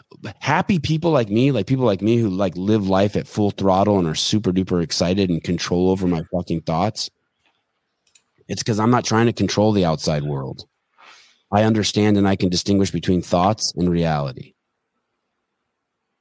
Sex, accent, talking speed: male, American, 170 wpm